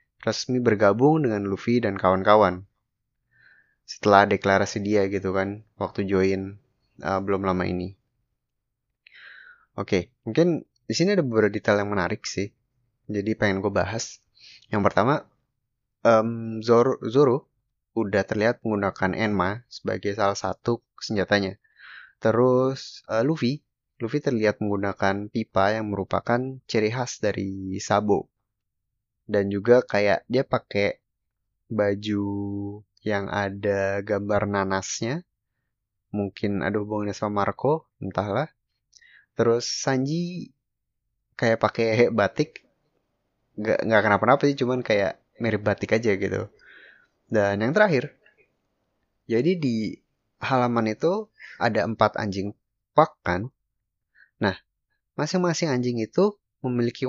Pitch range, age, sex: 100-120 Hz, 20-39, male